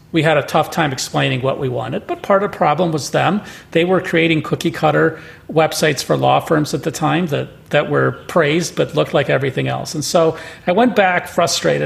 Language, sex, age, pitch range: English, male, 40-59, 140-175 Hz